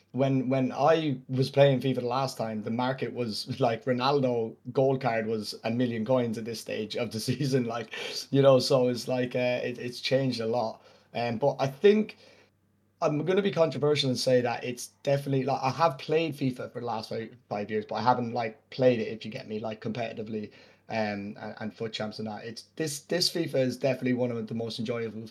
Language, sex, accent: English, male, British